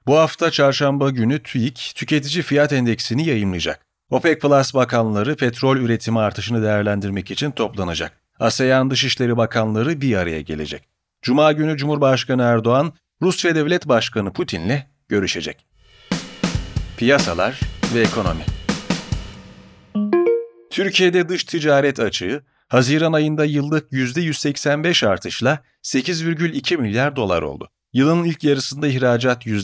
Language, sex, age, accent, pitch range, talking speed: Turkish, male, 40-59, native, 115-155 Hz, 105 wpm